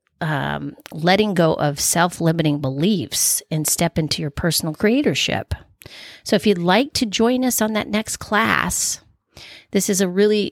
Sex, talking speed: female, 155 wpm